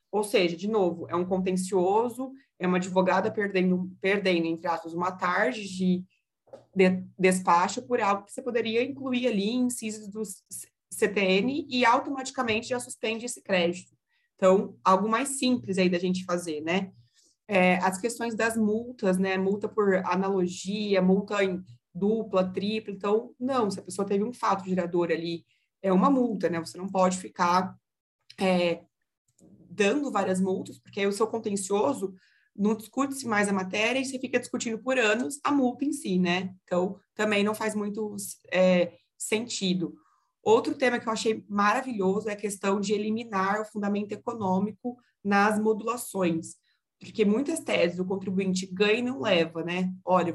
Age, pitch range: 20-39, 185-220 Hz